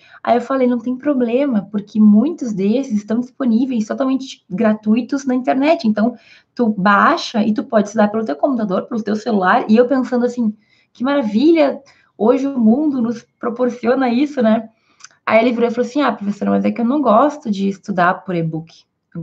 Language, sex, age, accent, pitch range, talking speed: Portuguese, female, 20-39, Brazilian, 200-245 Hz, 185 wpm